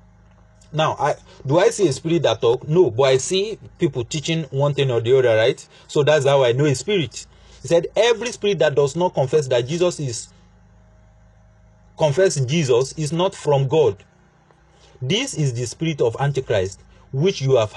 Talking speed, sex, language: 180 wpm, male, English